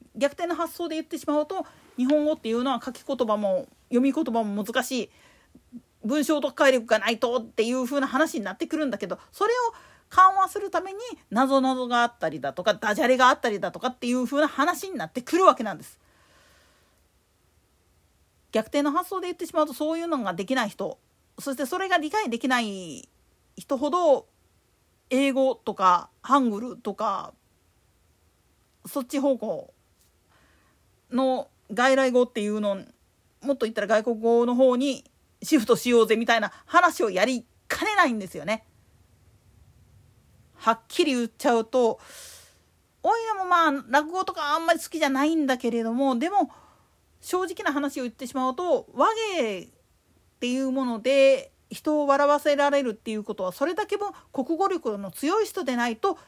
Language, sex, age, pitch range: Japanese, female, 40-59, 220-305 Hz